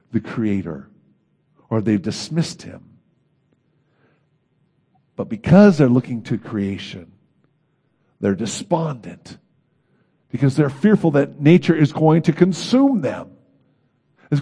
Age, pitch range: 50-69, 130-180 Hz